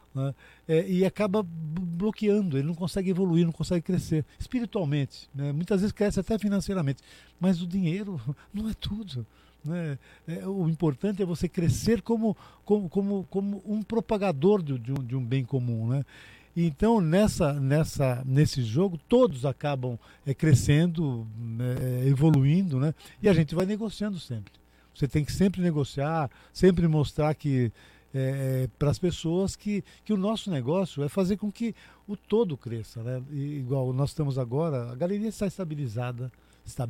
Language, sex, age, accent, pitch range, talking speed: Portuguese, male, 50-69, Brazilian, 135-190 Hz, 155 wpm